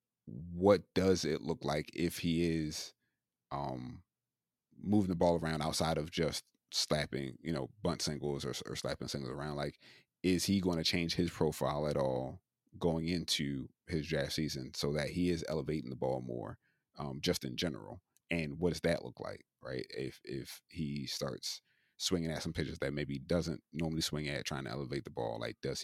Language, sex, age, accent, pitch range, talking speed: English, male, 30-49, American, 75-90 Hz, 190 wpm